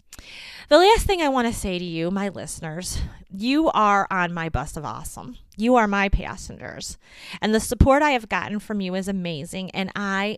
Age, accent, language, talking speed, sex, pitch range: 30-49, American, English, 195 wpm, female, 175-230 Hz